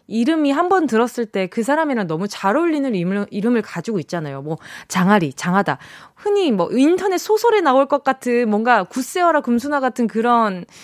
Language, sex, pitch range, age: Korean, female, 185-275 Hz, 20-39